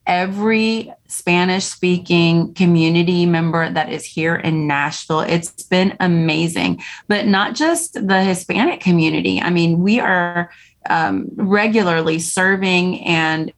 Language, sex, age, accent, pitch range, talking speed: English, female, 30-49, American, 165-190 Hz, 120 wpm